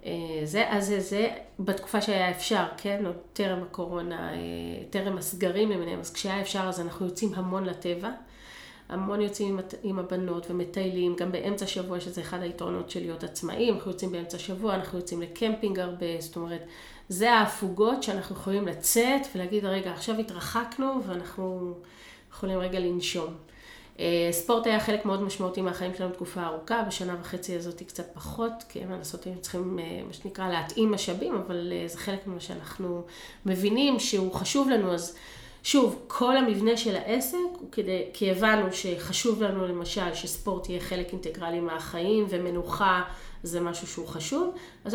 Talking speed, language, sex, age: 160 wpm, Hebrew, female, 30-49